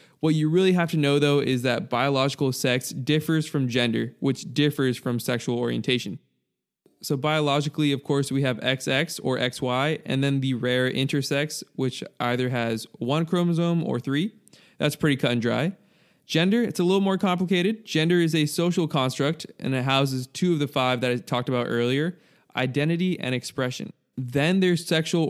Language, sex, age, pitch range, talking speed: English, male, 20-39, 130-160 Hz, 175 wpm